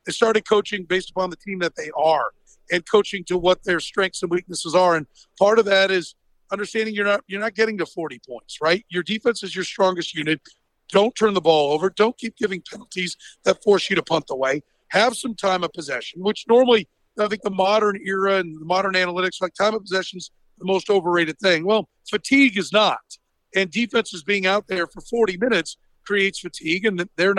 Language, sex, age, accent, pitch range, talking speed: English, male, 50-69, American, 180-210 Hz, 215 wpm